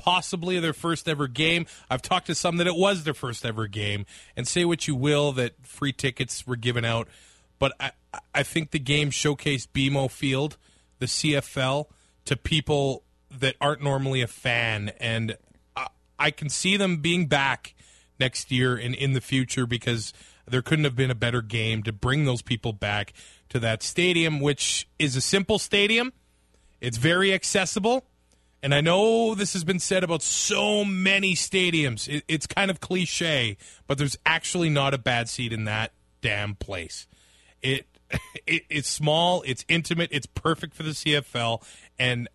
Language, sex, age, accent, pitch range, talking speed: English, male, 30-49, American, 125-170 Hz, 175 wpm